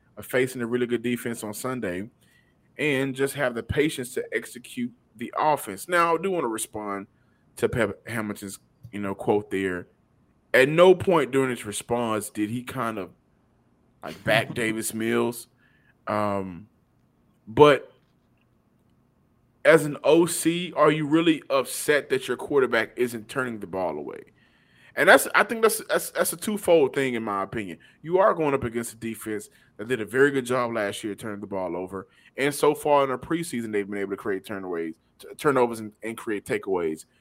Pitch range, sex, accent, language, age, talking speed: 110-140 Hz, male, American, English, 30-49, 175 wpm